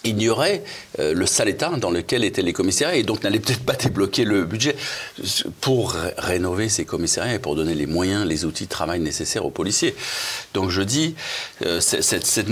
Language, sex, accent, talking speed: French, male, French, 175 wpm